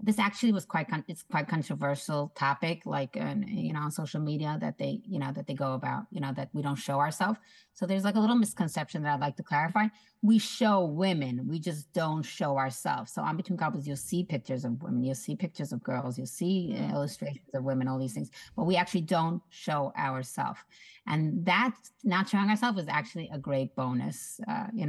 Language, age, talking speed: English, 30-49, 215 wpm